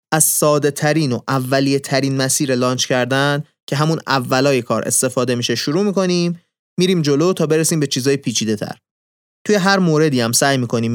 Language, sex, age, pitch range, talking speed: Persian, male, 30-49, 125-160 Hz, 165 wpm